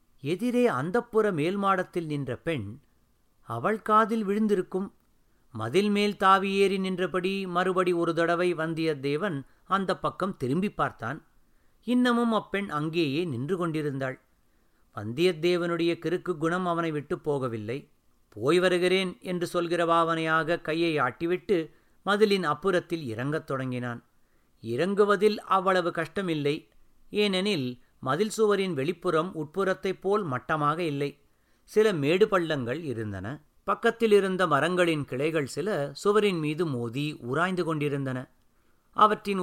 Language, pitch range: Tamil, 145-190 Hz